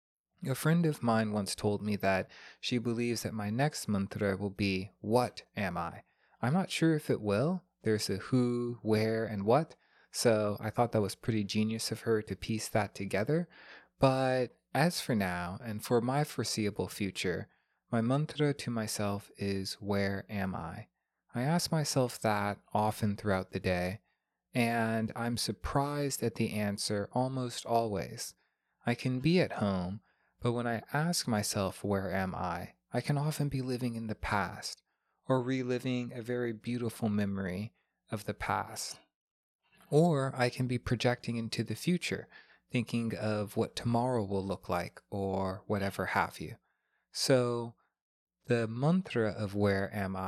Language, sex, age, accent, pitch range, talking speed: English, male, 20-39, American, 100-125 Hz, 160 wpm